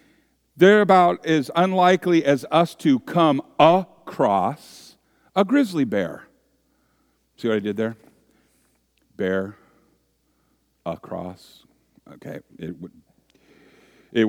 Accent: American